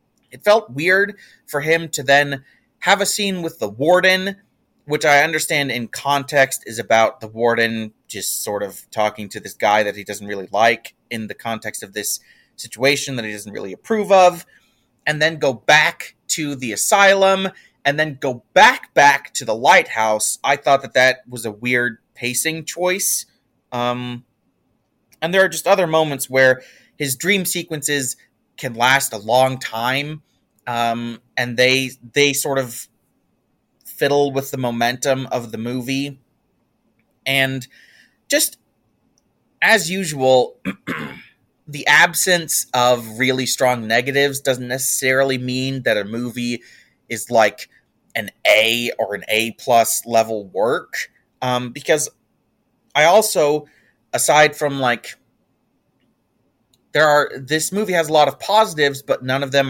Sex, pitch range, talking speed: male, 120-155 Hz, 145 wpm